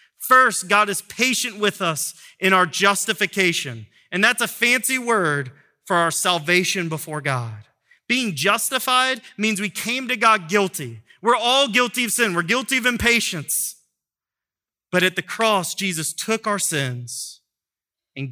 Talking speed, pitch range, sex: 145 wpm, 150-215 Hz, male